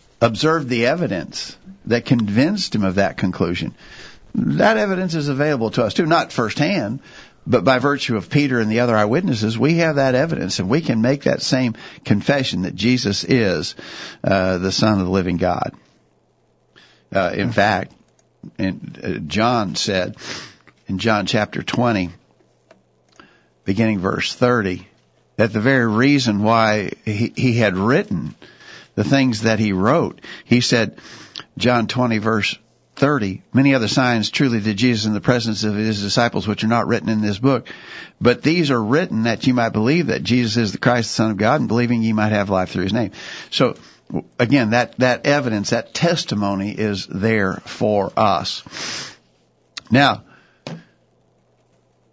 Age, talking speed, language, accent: 60-79, 160 wpm, English, American